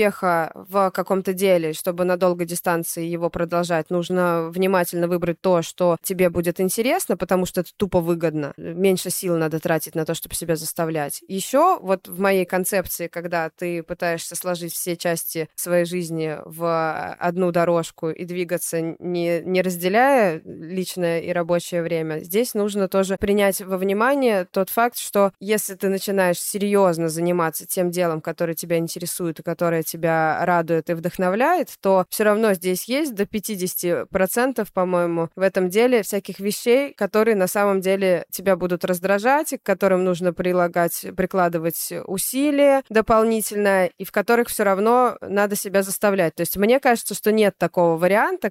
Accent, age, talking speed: native, 20-39, 155 wpm